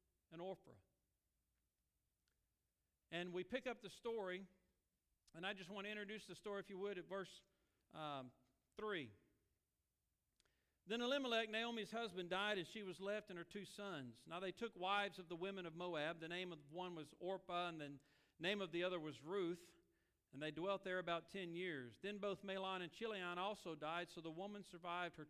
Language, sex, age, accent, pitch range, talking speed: English, male, 50-69, American, 160-200 Hz, 185 wpm